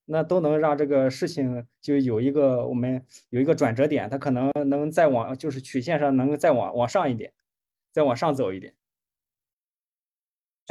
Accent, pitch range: native, 135-175 Hz